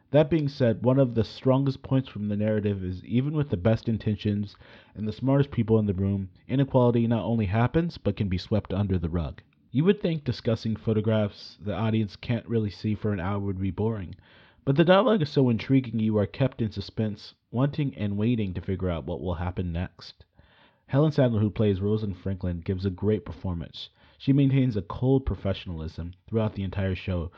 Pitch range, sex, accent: 95-115 Hz, male, American